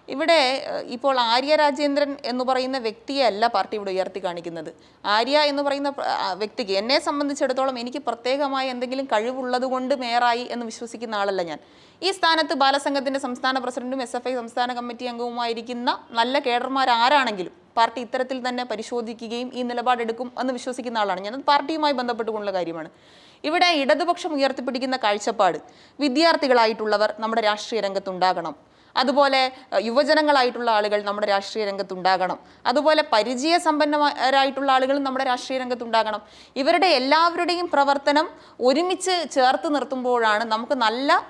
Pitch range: 230-285 Hz